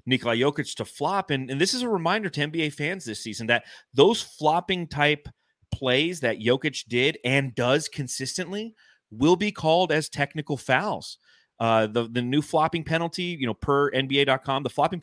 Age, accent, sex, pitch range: 30-49, American, male, 115-150 Hz